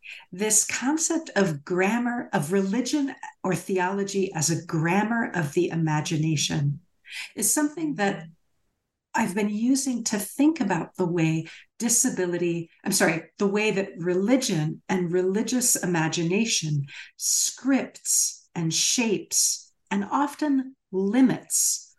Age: 50-69